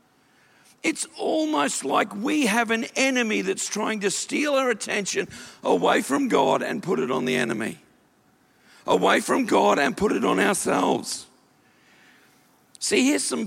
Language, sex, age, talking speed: English, male, 50-69, 145 wpm